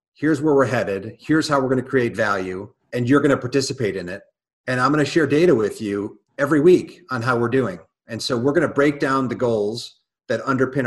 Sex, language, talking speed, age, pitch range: male, English, 215 wpm, 40-59, 110-130 Hz